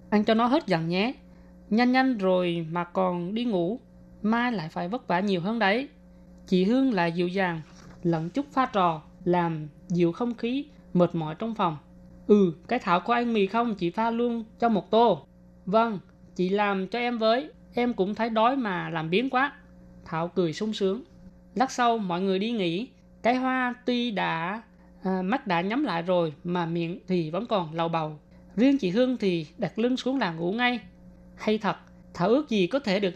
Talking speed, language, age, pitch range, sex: 200 wpm, Vietnamese, 20-39, 175-230 Hz, female